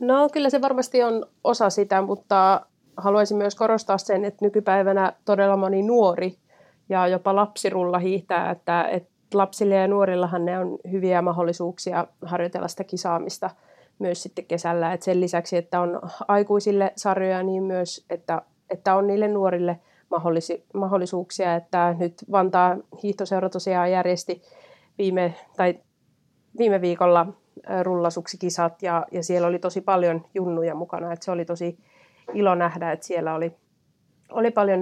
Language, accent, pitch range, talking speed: Finnish, native, 170-195 Hz, 135 wpm